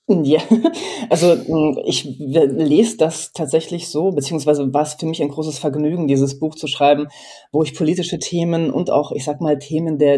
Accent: German